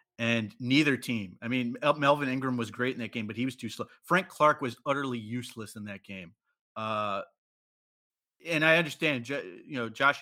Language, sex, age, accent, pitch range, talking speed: English, male, 30-49, American, 115-135 Hz, 190 wpm